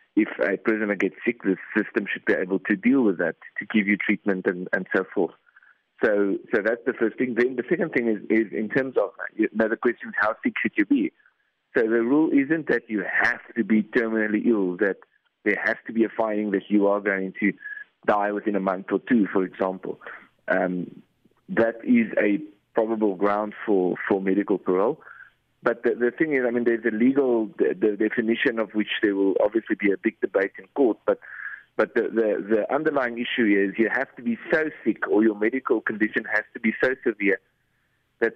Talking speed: 210 wpm